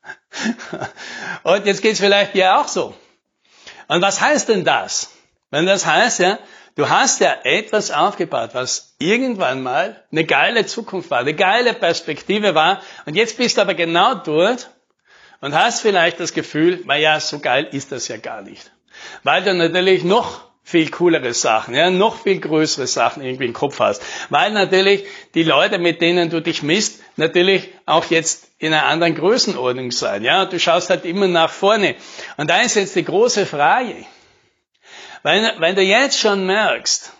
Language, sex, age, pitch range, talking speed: German, male, 60-79, 160-200 Hz, 175 wpm